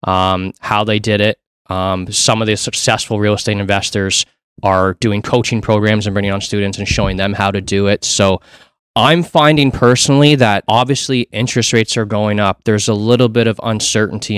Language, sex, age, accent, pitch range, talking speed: English, male, 20-39, American, 95-115 Hz, 190 wpm